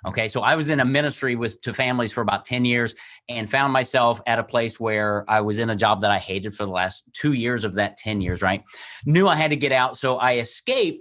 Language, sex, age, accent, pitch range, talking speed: English, male, 30-49, American, 130-200 Hz, 260 wpm